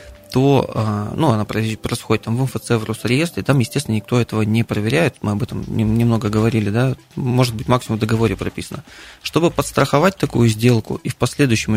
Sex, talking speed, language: male, 175 wpm, Russian